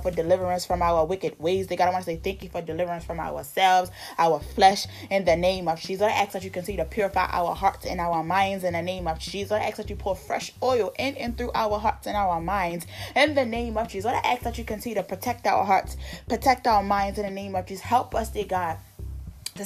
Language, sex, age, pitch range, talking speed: English, female, 20-39, 180-205 Hz, 255 wpm